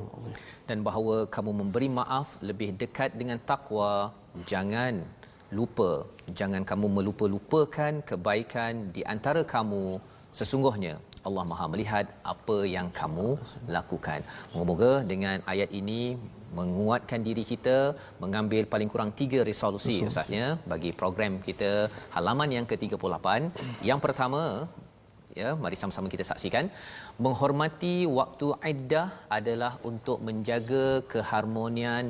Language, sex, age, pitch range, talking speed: Malayalam, male, 40-59, 105-130 Hz, 110 wpm